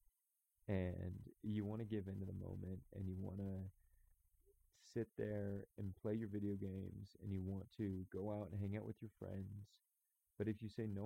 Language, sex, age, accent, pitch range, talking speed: English, male, 30-49, American, 95-105 Hz, 200 wpm